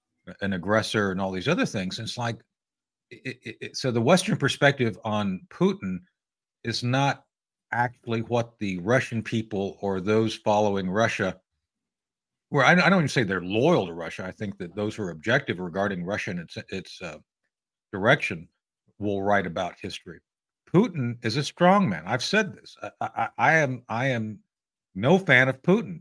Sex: male